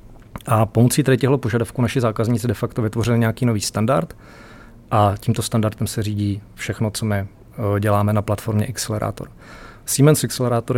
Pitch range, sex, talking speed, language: 105-120 Hz, male, 150 wpm, Czech